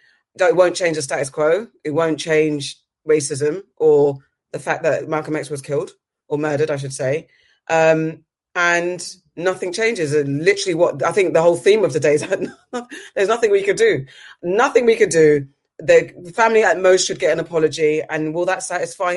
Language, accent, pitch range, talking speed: English, British, 155-195 Hz, 190 wpm